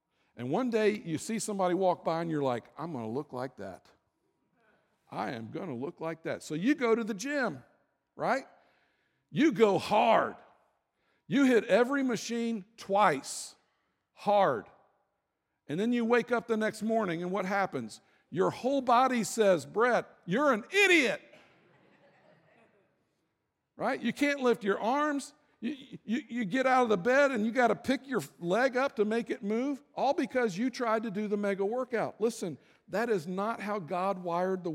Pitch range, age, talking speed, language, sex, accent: 155-235 Hz, 50-69, 175 wpm, English, male, American